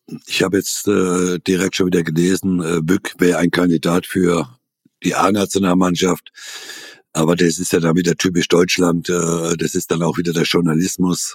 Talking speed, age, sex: 170 wpm, 60-79, male